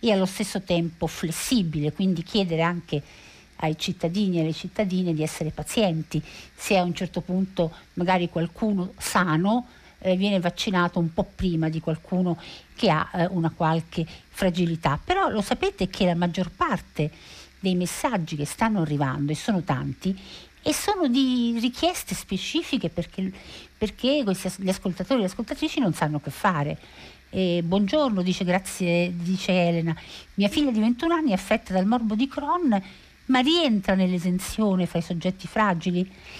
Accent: native